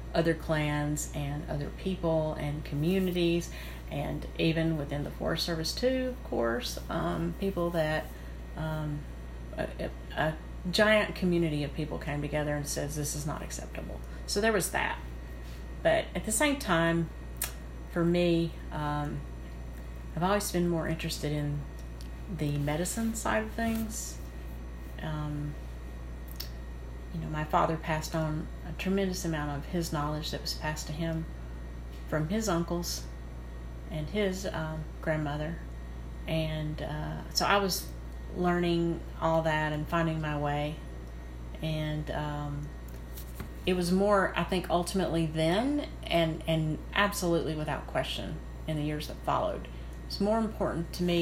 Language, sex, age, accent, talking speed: English, female, 40-59, American, 140 wpm